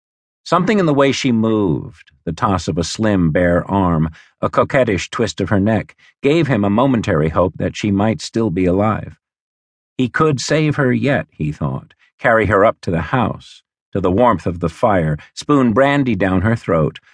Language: English